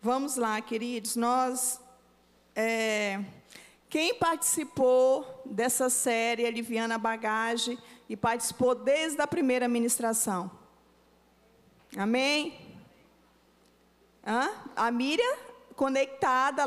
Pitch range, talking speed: 240-310 Hz, 85 wpm